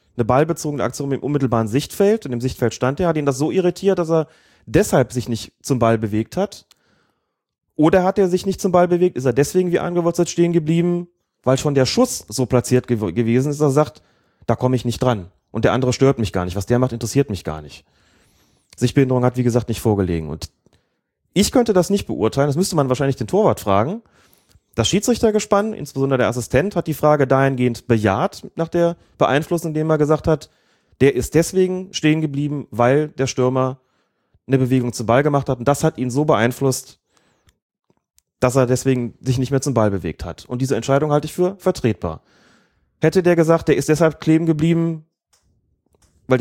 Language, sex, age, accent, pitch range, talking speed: German, male, 30-49, German, 120-165 Hz, 195 wpm